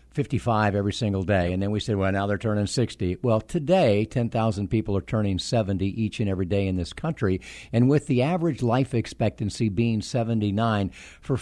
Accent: American